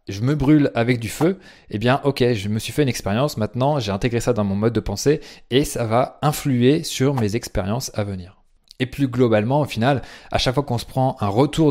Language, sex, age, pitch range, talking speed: French, male, 20-39, 105-130 Hz, 235 wpm